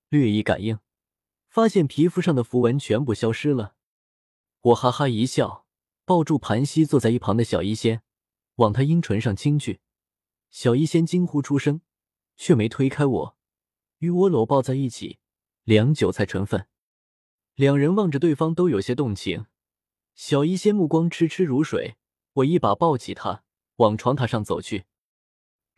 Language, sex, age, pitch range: Chinese, male, 20-39, 110-160 Hz